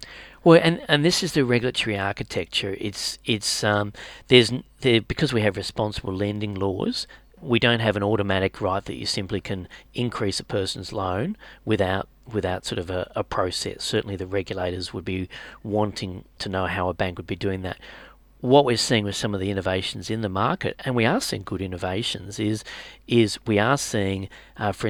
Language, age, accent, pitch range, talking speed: English, 40-59, Australian, 95-115 Hz, 190 wpm